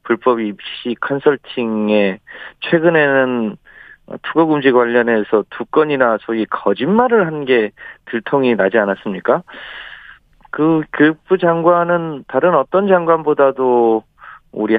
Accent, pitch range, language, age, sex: native, 110-155 Hz, Korean, 40-59, male